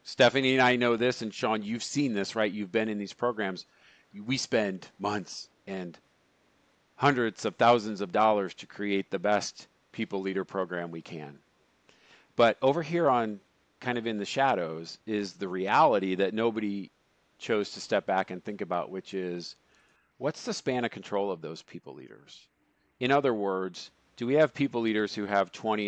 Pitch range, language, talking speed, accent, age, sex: 95-115 Hz, English, 180 wpm, American, 40-59, male